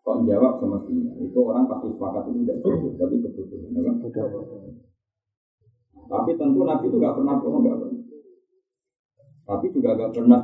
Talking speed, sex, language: 125 wpm, male, Malay